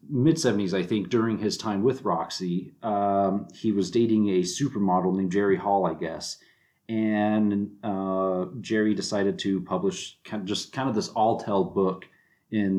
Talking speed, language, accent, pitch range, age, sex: 160 wpm, English, American, 90-110 Hz, 40-59, male